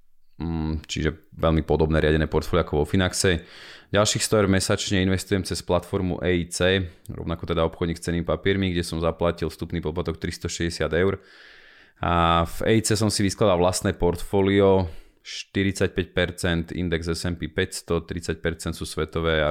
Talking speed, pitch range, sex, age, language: 130 wpm, 80-95 Hz, male, 30-49, Slovak